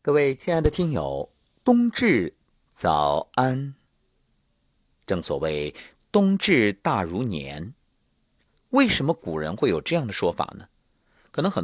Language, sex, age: Chinese, male, 50-69